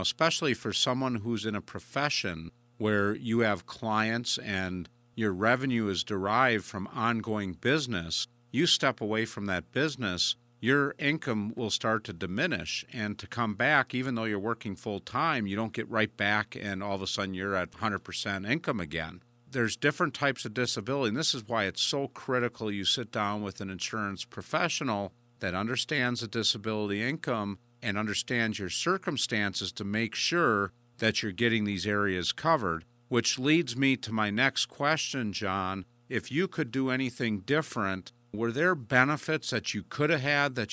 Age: 50-69